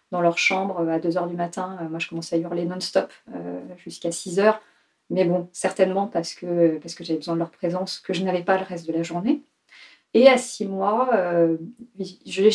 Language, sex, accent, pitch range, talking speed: French, female, French, 175-225 Hz, 190 wpm